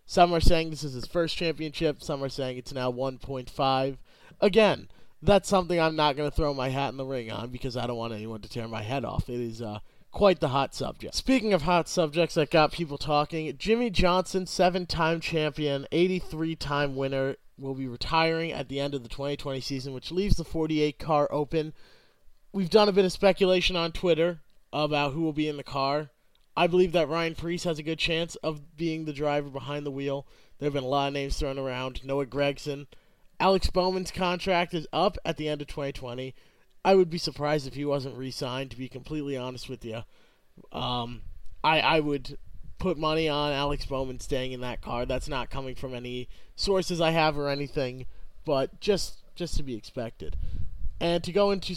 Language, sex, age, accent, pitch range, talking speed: English, male, 30-49, American, 130-165 Hz, 200 wpm